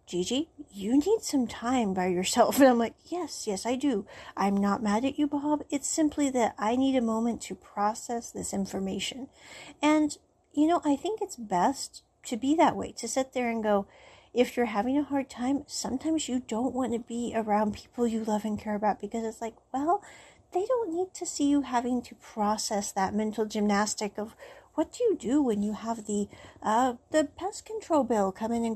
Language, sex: English, female